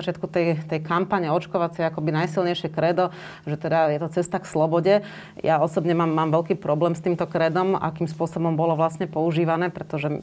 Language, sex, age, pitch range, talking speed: Slovak, female, 30-49, 155-175 Hz, 165 wpm